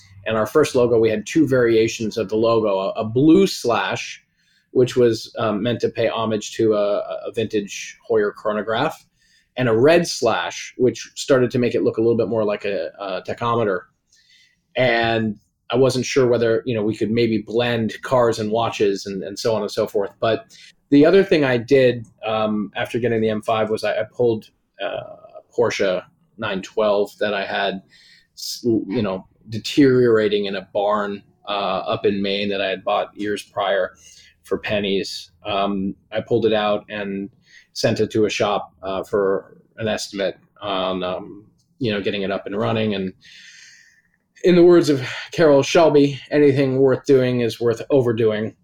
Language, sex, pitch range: English, male, 105-125 Hz